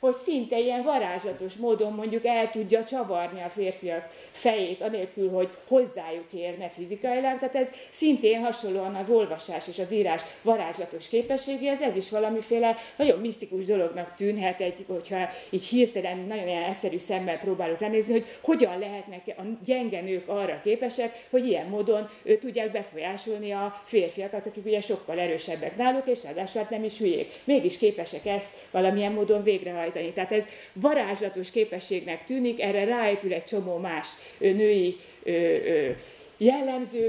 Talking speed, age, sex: 140 wpm, 30-49, female